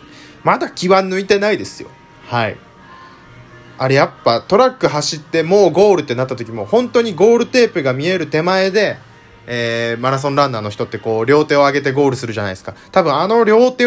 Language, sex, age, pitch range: Japanese, male, 20-39, 110-175 Hz